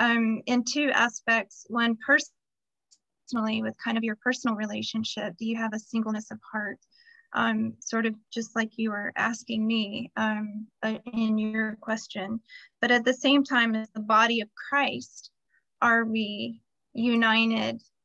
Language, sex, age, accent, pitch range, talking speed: English, female, 20-39, American, 220-245 Hz, 150 wpm